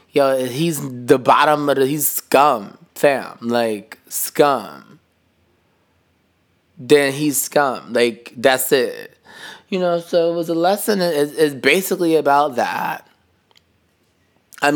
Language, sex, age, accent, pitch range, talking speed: English, male, 20-39, American, 105-140 Hz, 120 wpm